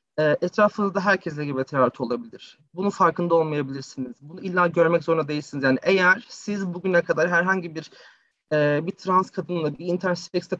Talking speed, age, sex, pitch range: 140 wpm, 30-49, male, 150-190 Hz